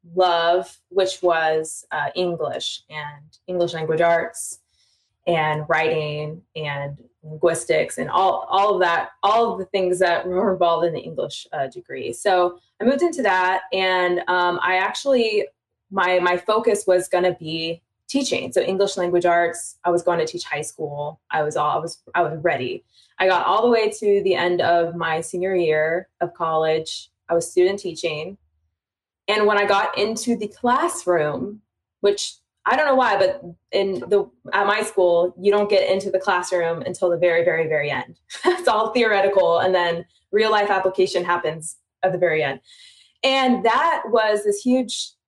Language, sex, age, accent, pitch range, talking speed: English, female, 20-39, American, 165-205 Hz, 175 wpm